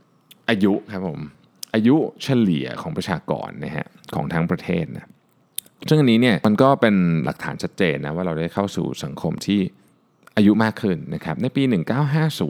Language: Thai